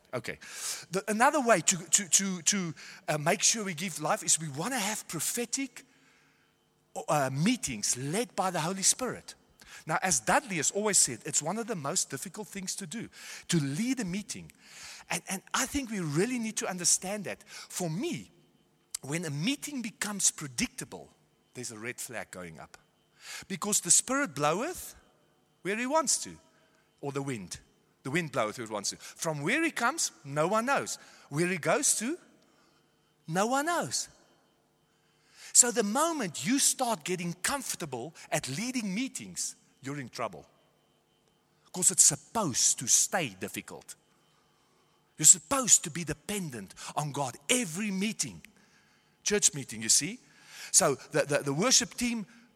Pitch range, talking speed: 160-235 Hz, 155 wpm